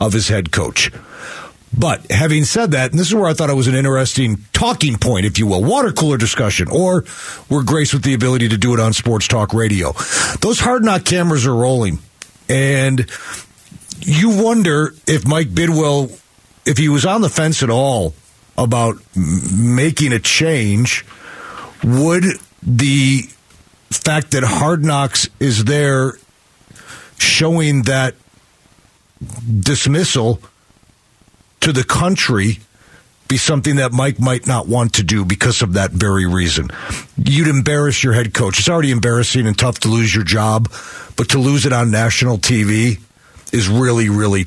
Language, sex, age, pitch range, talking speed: English, male, 40-59, 110-145 Hz, 155 wpm